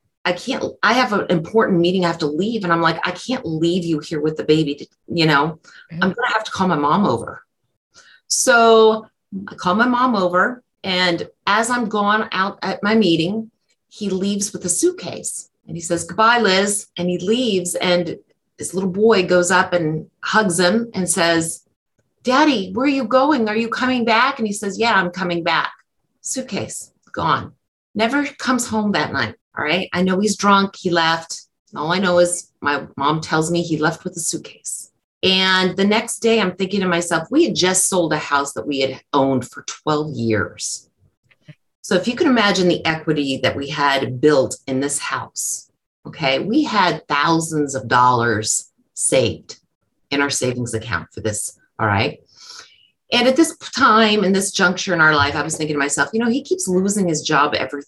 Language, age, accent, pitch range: English, 30-49, American, 155-215 Hz